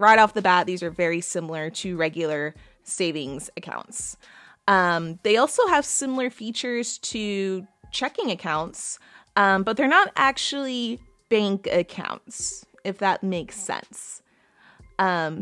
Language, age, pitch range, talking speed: English, 20-39, 190-245 Hz, 130 wpm